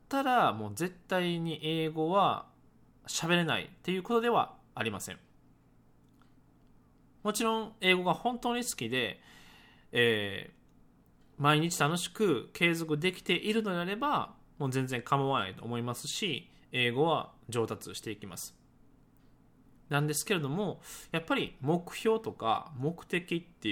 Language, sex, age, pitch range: Japanese, male, 20-39, 115-185 Hz